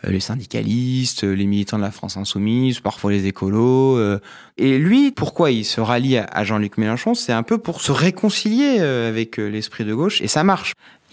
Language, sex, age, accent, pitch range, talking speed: French, male, 30-49, French, 110-160 Hz, 185 wpm